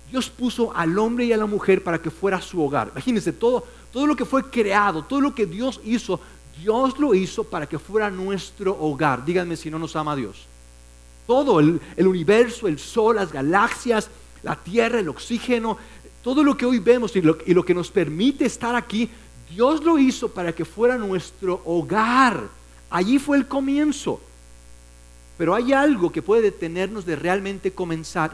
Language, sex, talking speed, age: Spanish, male, 185 wpm, 50-69